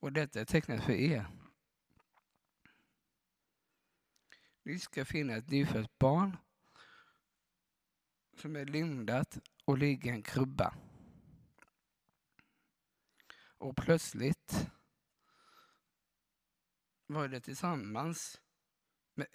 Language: Swedish